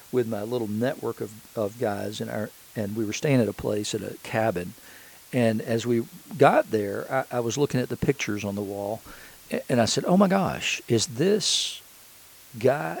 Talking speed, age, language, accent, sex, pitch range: 200 wpm, 50-69, English, American, male, 105-125 Hz